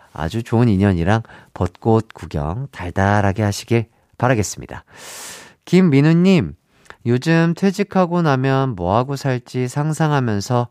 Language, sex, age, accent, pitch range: Korean, male, 40-59, native, 95-145 Hz